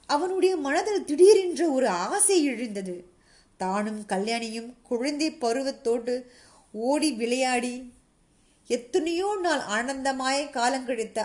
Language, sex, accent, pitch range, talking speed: Tamil, female, native, 230-285 Hz, 90 wpm